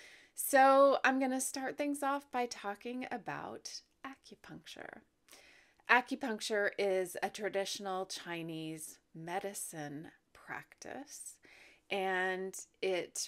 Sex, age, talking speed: female, 30-49, 85 wpm